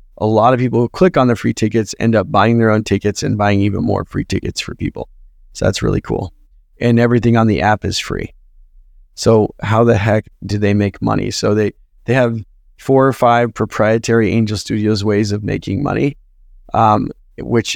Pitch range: 100-115 Hz